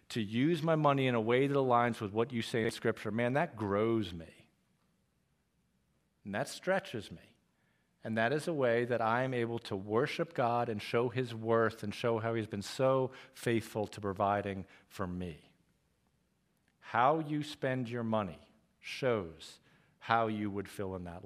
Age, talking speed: 50-69, 175 wpm